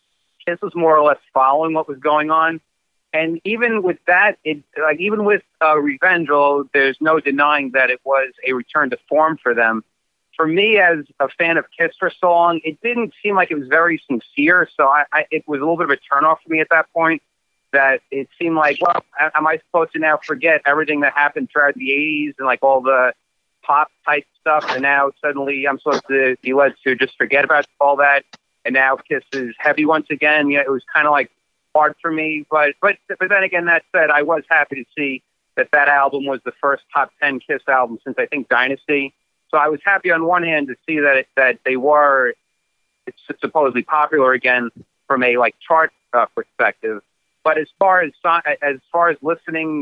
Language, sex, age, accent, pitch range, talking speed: English, male, 40-59, American, 135-160 Hz, 215 wpm